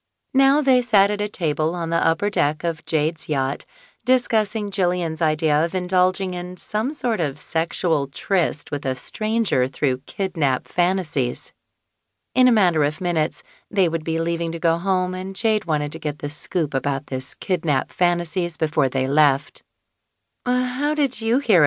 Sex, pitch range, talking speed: female, 155-205 Hz, 165 wpm